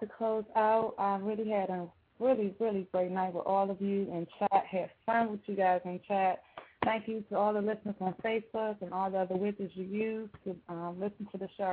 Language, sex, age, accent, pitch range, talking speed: English, female, 20-39, American, 185-215 Hz, 230 wpm